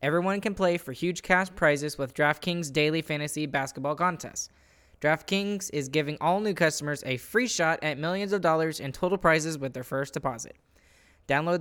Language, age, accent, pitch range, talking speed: English, 10-29, American, 145-175 Hz, 175 wpm